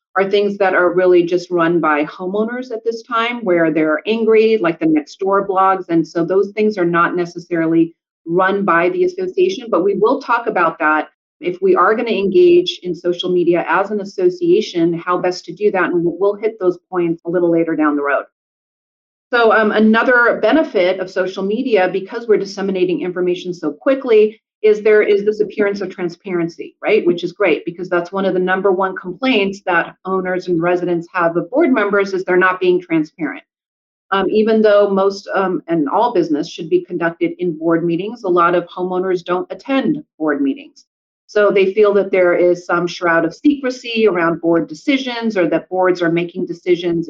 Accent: American